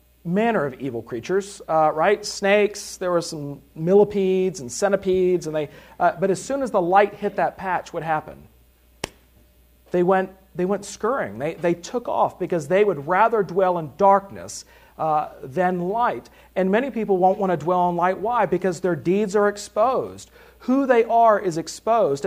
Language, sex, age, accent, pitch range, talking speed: English, male, 40-59, American, 165-210 Hz, 180 wpm